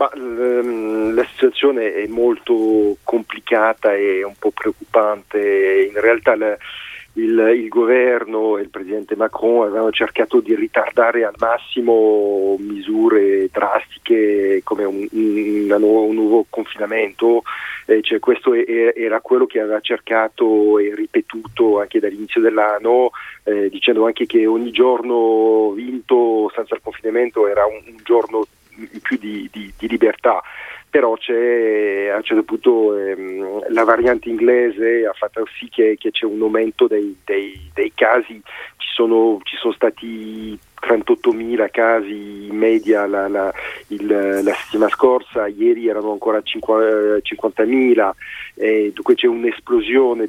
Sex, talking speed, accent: male, 125 wpm, native